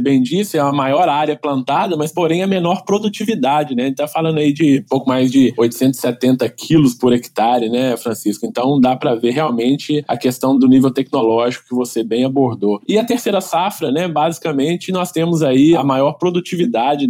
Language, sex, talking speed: Portuguese, male, 195 wpm